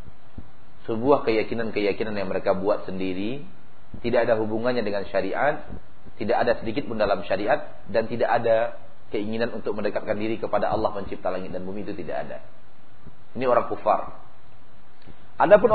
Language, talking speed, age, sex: Malay, 140 wpm, 40-59, male